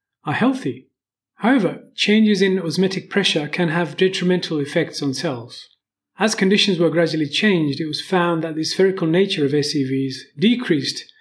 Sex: male